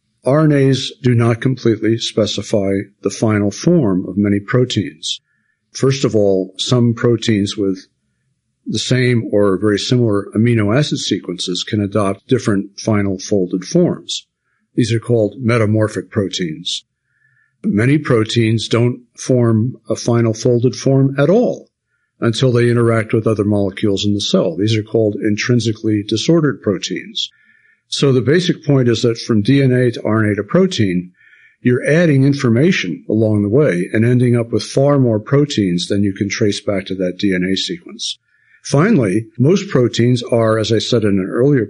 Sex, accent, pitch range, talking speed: male, American, 100-125 Hz, 150 wpm